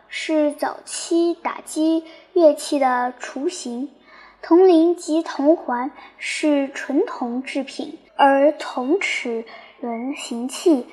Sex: male